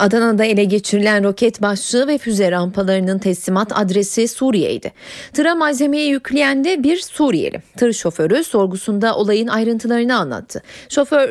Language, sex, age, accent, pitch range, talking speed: Turkish, female, 30-49, native, 195-260 Hz, 125 wpm